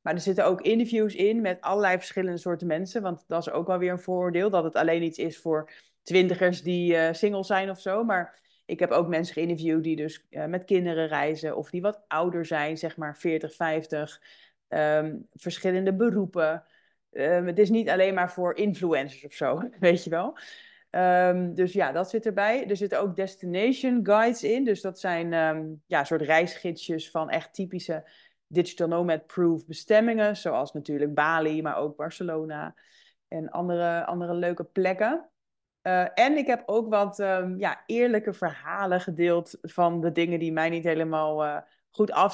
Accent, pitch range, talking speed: Dutch, 160-190 Hz, 175 wpm